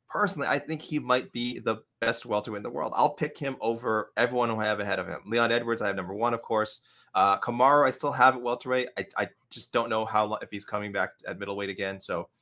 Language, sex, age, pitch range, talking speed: English, male, 20-39, 105-130 Hz, 255 wpm